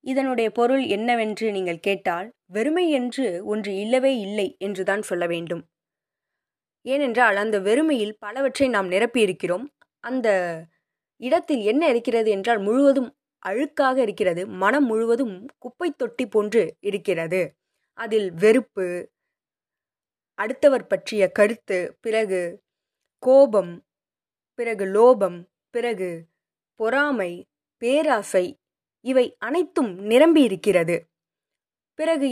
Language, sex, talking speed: Tamil, female, 90 wpm